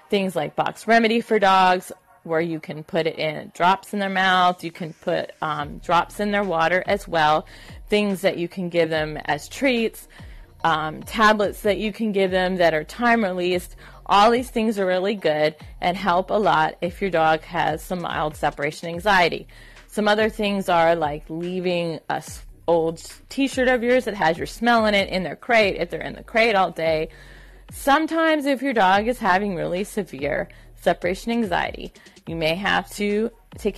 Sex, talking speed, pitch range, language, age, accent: female, 185 wpm, 165-210 Hz, English, 30-49, American